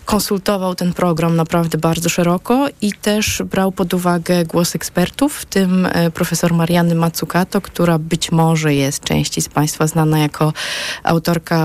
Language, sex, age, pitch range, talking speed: Polish, female, 20-39, 155-190 Hz, 145 wpm